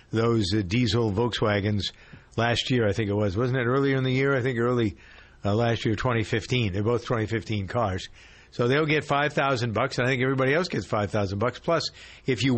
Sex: male